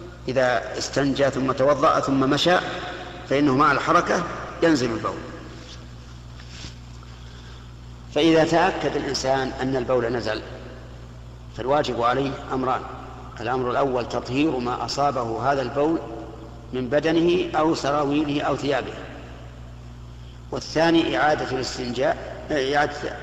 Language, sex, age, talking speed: Arabic, male, 50-69, 95 wpm